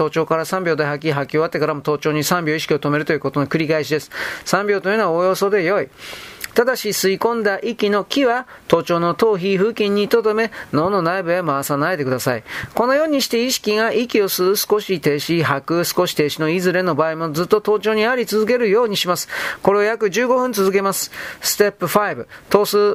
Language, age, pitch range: Japanese, 40-59, 165-215 Hz